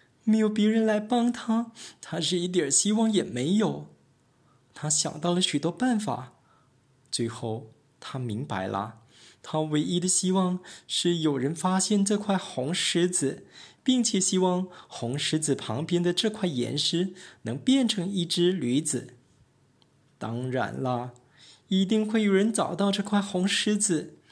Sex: male